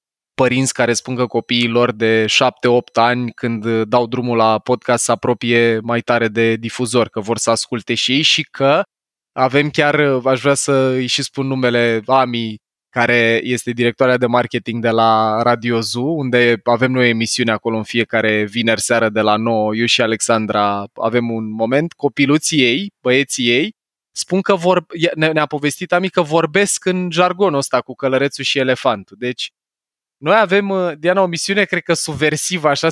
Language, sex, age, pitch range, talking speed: Romanian, male, 20-39, 115-145 Hz, 165 wpm